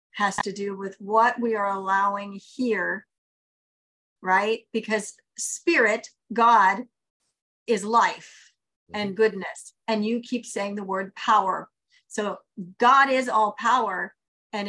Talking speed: 125 wpm